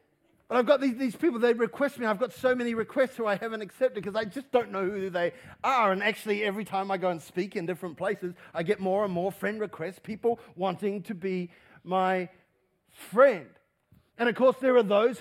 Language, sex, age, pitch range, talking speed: English, male, 40-59, 185-240 Hz, 220 wpm